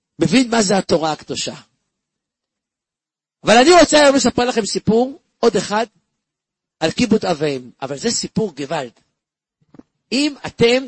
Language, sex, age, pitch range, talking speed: Hebrew, male, 50-69, 165-250 Hz, 130 wpm